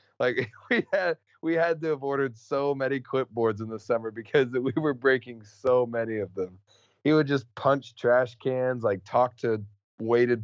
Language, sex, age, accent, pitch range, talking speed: English, male, 20-39, American, 90-115 Hz, 180 wpm